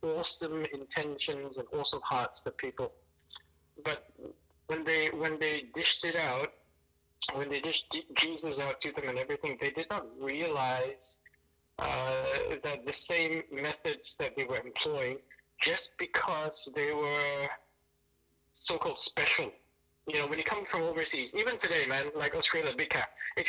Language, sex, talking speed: English, male, 150 wpm